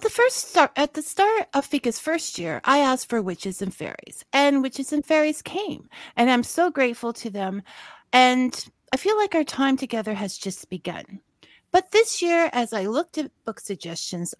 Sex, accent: female, American